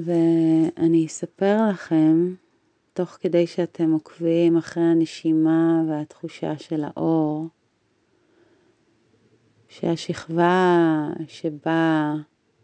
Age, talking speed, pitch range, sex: 30-49, 60 wpm, 155-175 Hz, female